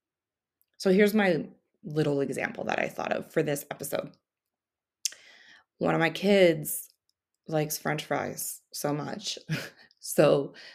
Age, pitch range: 30-49, 155-210 Hz